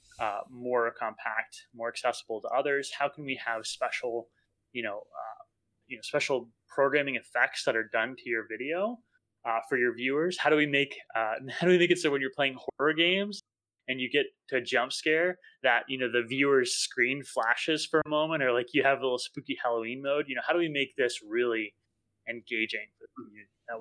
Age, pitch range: 20-39, 115-155 Hz